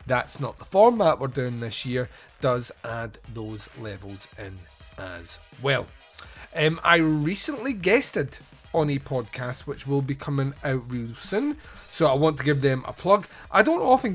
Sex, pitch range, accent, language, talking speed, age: male, 125-160 Hz, British, English, 170 wpm, 30-49